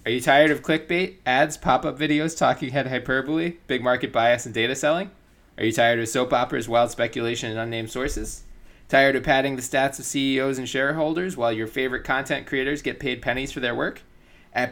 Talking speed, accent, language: 200 wpm, American, English